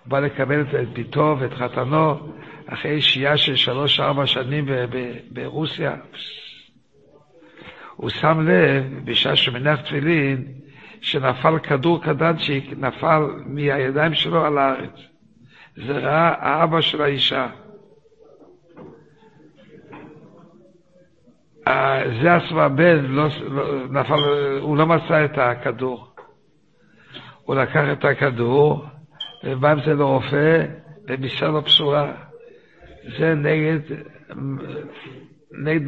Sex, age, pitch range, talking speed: male, 60-79, 135-160 Hz, 100 wpm